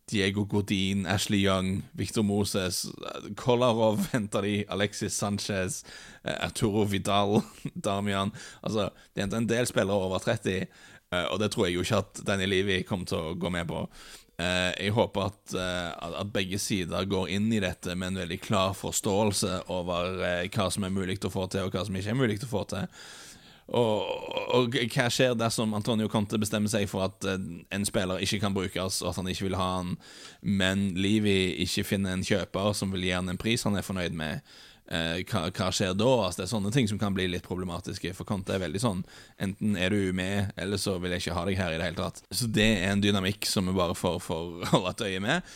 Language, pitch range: English, 90-105 Hz